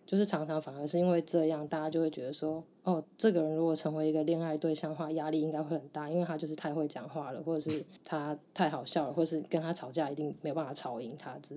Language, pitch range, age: Chinese, 155-175 Hz, 20-39